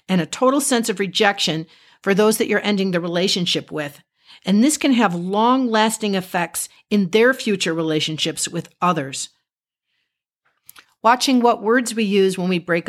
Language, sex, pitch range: English, female, 180-230 Hz